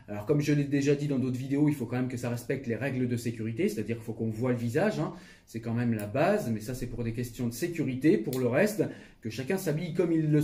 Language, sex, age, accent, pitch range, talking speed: French, male, 30-49, French, 120-160 Hz, 285 wpm